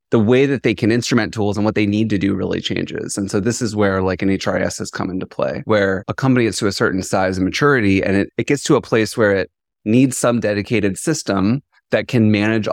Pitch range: 95-110 Hz